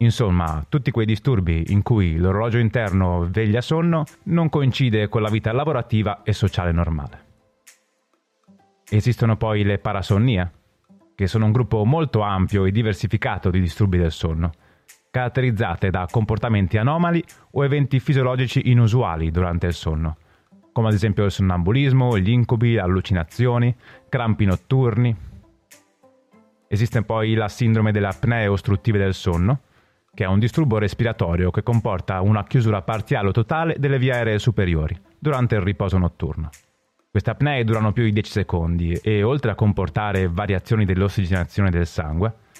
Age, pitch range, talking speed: 30-49, 95-125 Hz, 140 wpm